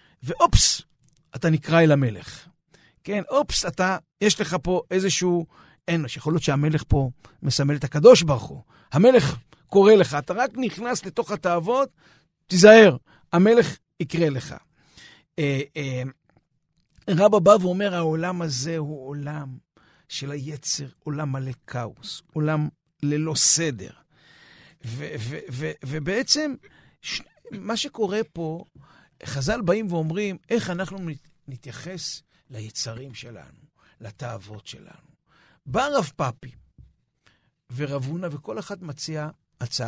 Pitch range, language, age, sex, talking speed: 140-195 Hz, Hebrew, 50-69, male, 115 wpm